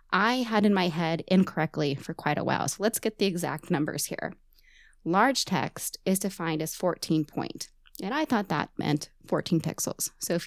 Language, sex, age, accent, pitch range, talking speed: English, female, 20-39, American, 155-210 Hz, 190 wpm